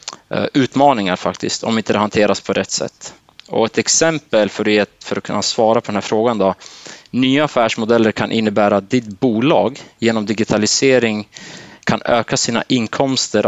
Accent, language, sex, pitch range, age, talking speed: Norwegian, Swedish, male, 105-125 Hz, 30-49, 160 wpm